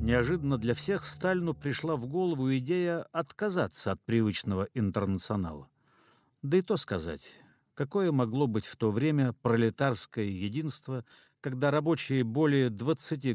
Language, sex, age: Russian, male, 50-69